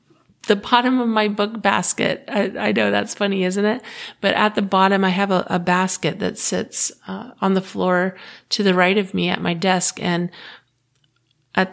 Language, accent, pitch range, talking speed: English, American, 180-210 Hz, 195 wpm